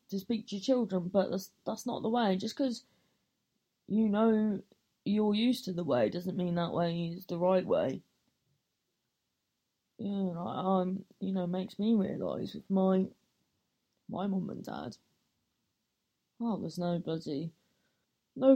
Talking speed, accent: 155 wpm, British